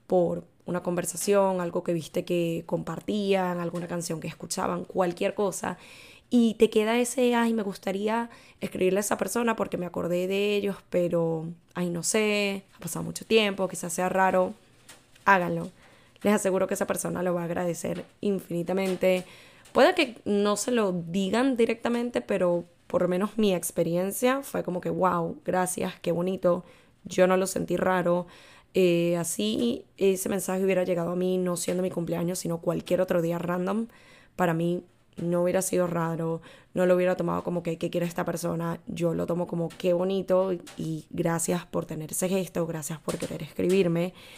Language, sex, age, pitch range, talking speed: Spanish, female, 10-29, 170-195 Hz, 170 wpm